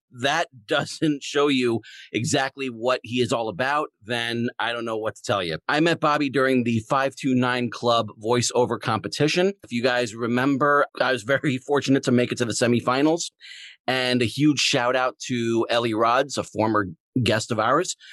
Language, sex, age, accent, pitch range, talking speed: English, male, 30-49, American, 115-140 Hz, 180 wpm